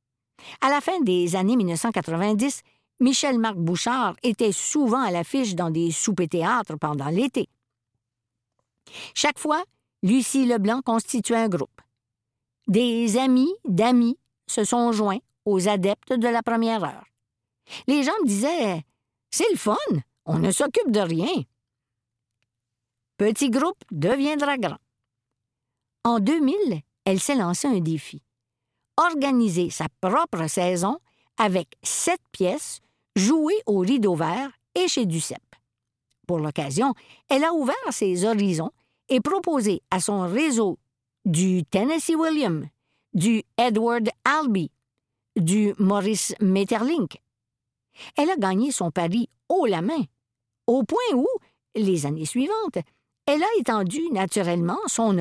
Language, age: French, 50-69